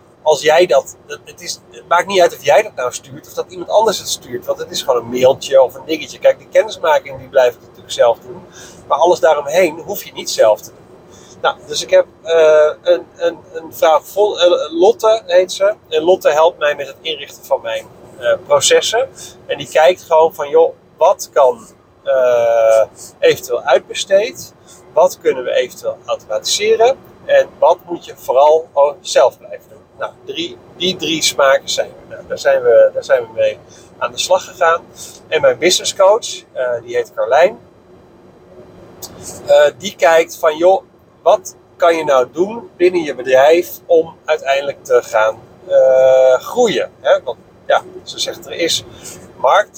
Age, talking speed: 40-59, 180 wpm